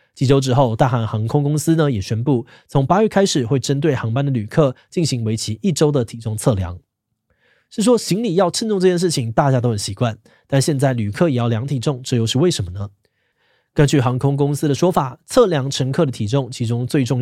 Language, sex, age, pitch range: Chinese, male, 20-39, 115-150 Hz